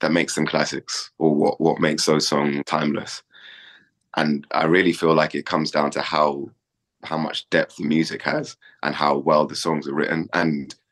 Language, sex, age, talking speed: English, male, 20-39, 190 wpm